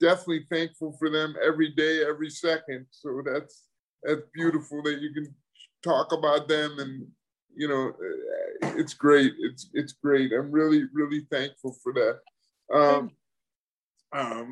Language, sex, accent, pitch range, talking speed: English, male, American, 155-195 Hz, 140 wpm